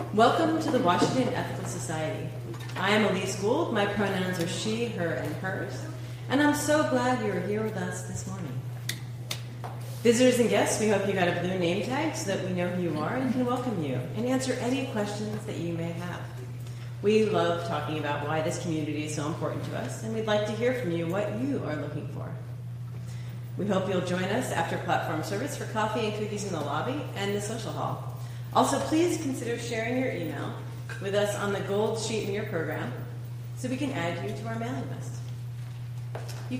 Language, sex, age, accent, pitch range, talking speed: English, female, 30-49, American, 120-150 Hz, 205 wpm